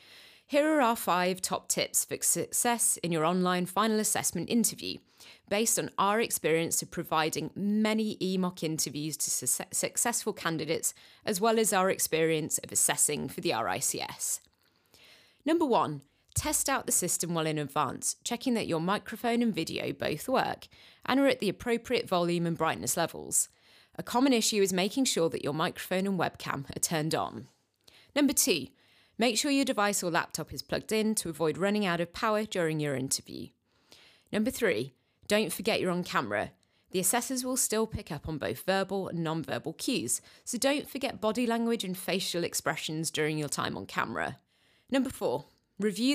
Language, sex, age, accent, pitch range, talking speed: English, female, 30-49, British, 165-230 Hz, 170 wpm